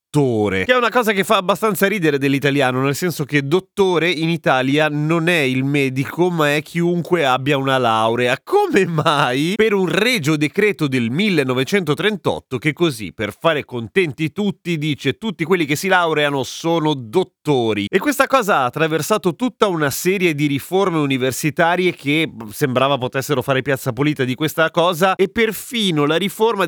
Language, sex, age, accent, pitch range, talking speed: Italian, male, 30-49, native, 135-180 Hz, 160 wpm